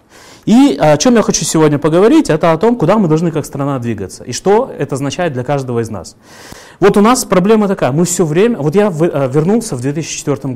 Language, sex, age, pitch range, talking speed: Russian, male, 20-39, 125-170 Hz, 210 wpm